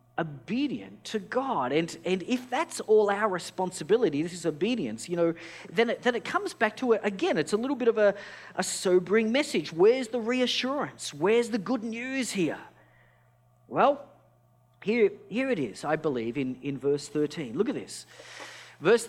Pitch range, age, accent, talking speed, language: 150-235 Hz, 40-59, Australian, 175 wpm, English